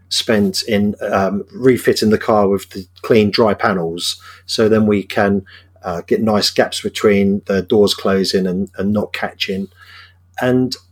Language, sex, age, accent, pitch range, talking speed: English, male, 40-59, British, 95-130 Hz, 155 wpm